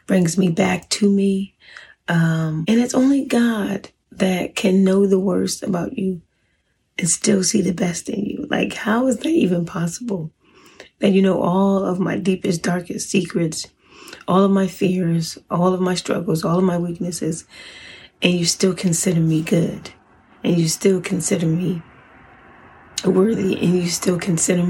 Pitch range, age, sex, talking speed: 165-195 Hz, 30-49, female, 165 wpm